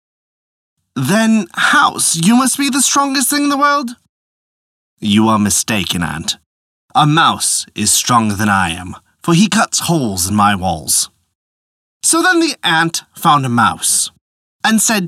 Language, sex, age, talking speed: English, male, 30-49, 150 wpm